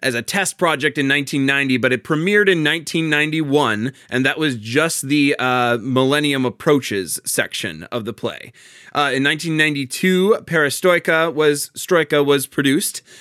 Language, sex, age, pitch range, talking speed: English, male, 20-39, 125-155 Hz, 140 wpm